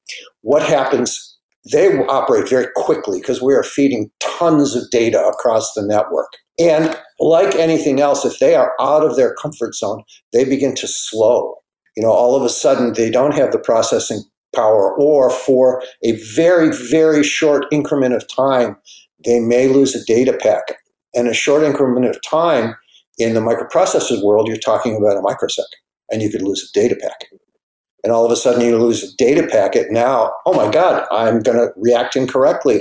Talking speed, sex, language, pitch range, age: 185 wpm, male, English, 120-165 Hz, 50-69